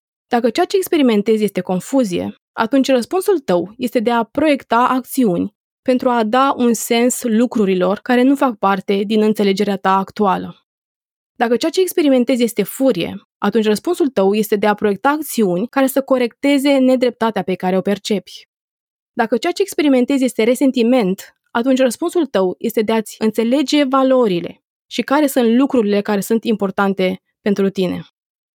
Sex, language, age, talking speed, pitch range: female, Romanian, 20-39, 155 wpm, 205-270 Hz